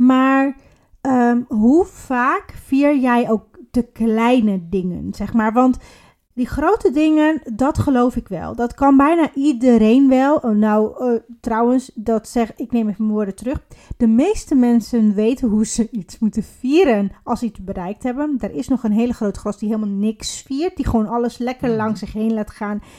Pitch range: 220-275 Hz